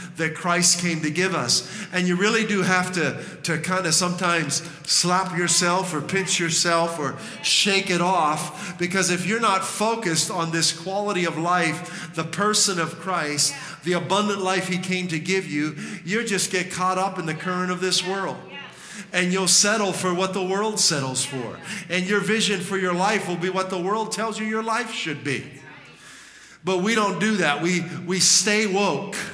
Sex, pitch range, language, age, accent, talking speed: male, 165-195 Hz, English, 50-69, American, 190 wpm